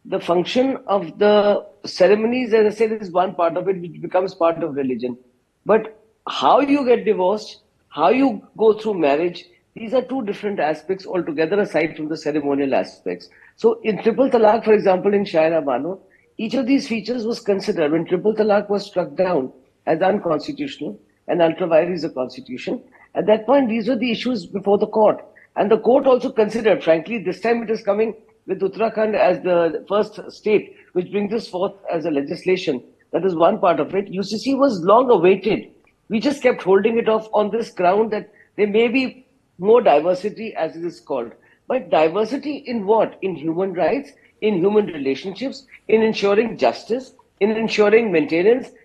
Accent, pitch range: Indian, 180-230 Hz